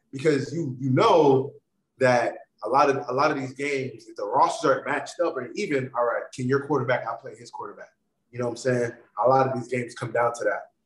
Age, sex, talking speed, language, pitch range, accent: 20-39, male, 240 wpm, English, 125-175 Hz, American